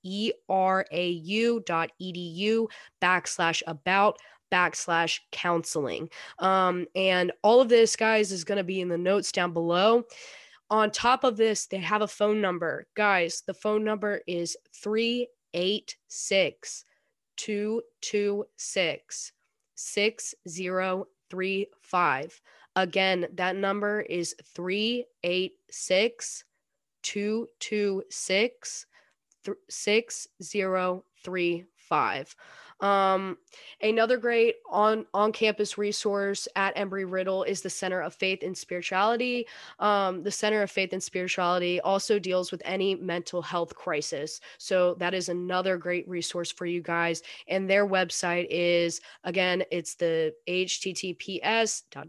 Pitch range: 175-210 Hz